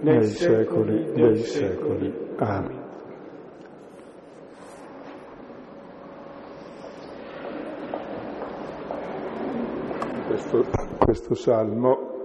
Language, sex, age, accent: Italian, male, 50-69, native